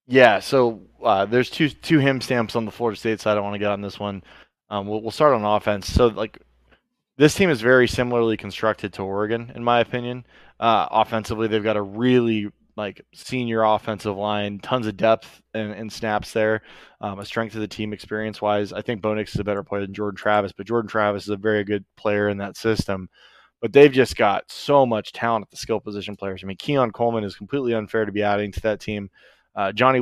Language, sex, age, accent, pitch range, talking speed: English, male, 20-39, American, 100-115 Hz, 220 wpm